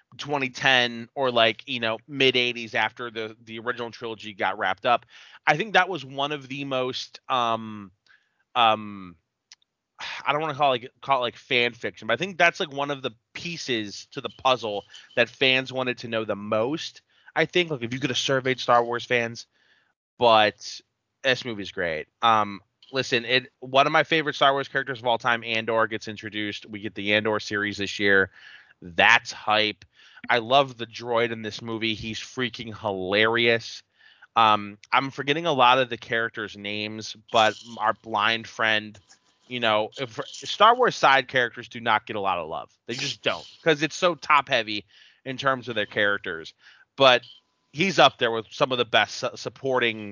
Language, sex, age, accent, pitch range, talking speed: English, male, 20-39, American, 110-130 Hz, 185 wpm